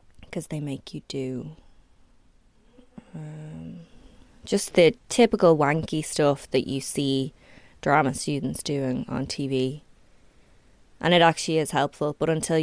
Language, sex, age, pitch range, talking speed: English, female, 20-39, 150-185 Hz, 125 wpm